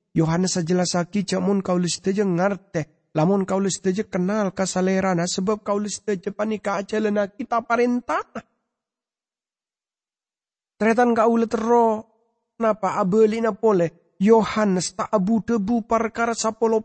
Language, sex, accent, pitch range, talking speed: English, male, Indonesian, 145-225 Hz, 115 wpm